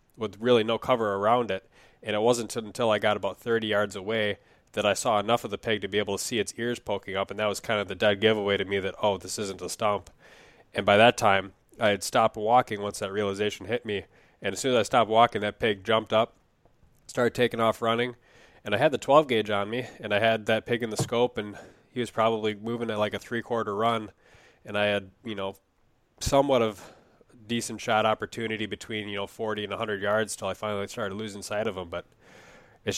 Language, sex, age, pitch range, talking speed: English, male, 20-39, 100-115 Hz, 235 wpm